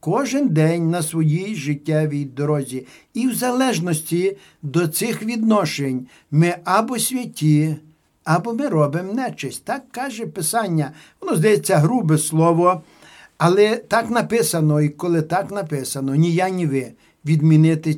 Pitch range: 155-215 Hz